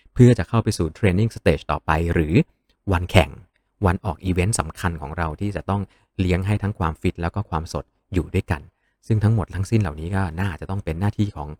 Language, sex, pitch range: Thai, male, 85-110 Hz